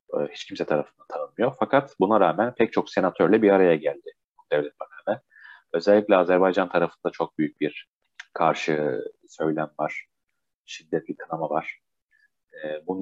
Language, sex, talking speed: Turkish, male, 135 wpm